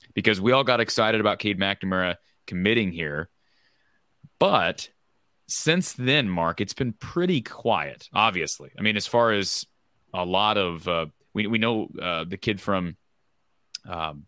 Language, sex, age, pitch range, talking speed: English, male, 30-49, 90-110 Hz, 150 wpm